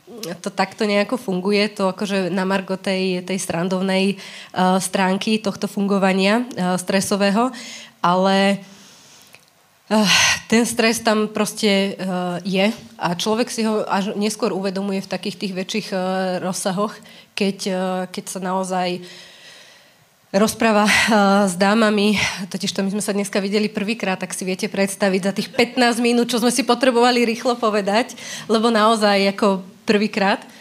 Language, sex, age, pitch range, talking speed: Slovak, female, 20-39, 185-215 Hz, 140 wpm